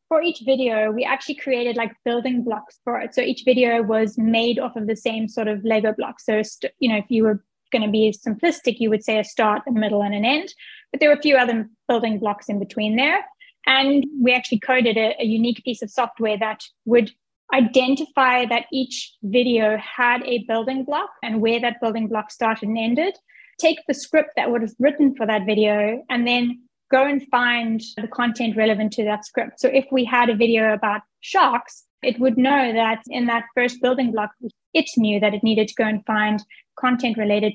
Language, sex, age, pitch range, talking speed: English, female, 20-39, 220-255 Hz, 210 wpm